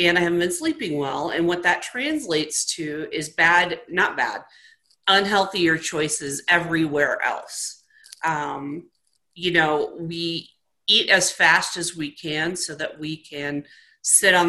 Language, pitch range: English, 150-185 Hz